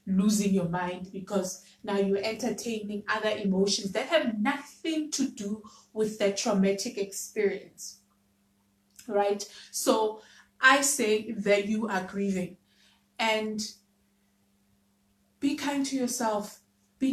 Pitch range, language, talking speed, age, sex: 200-250 Hz, English, 110 wpm, 20-39, female